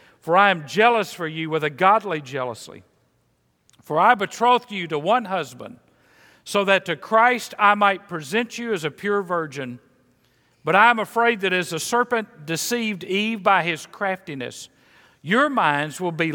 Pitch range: 165-225 Hz